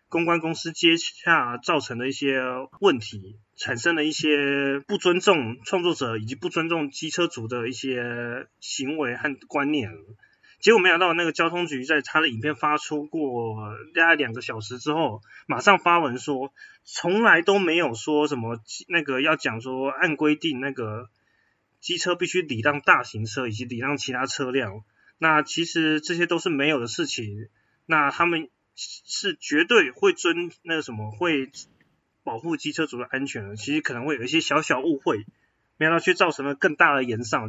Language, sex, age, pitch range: Chinese, male, 20-39, 130-175 Hz